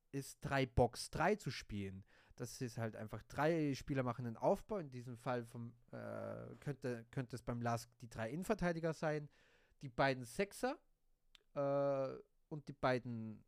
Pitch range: 130-175 Hz